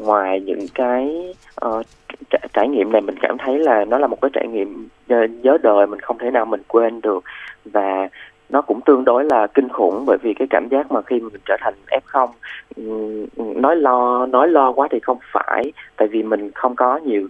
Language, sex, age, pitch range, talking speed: Vietnamese, male, 20-39, 105-135 Hz, 210 wpm